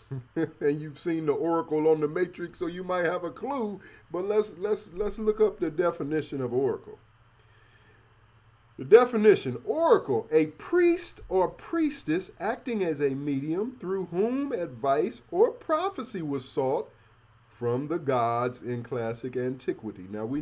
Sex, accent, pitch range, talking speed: male, American, 115-175 Hz, 145 wpm